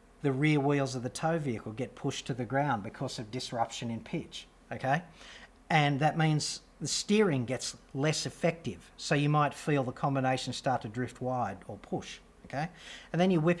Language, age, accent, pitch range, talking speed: English, 40-59, Australian, 125-155 Hz, 185 wpm